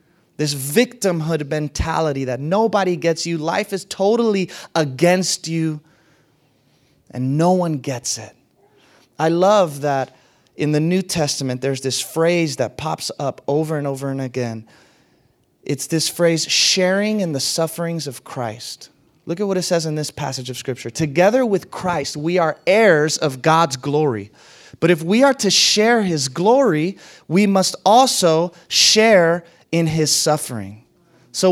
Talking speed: 150 wpm